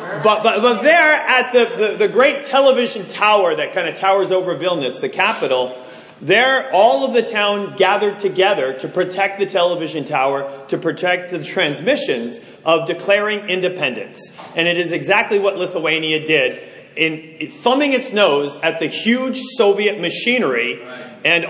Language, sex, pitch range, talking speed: English, male, 170-220 Hz, 155 wpm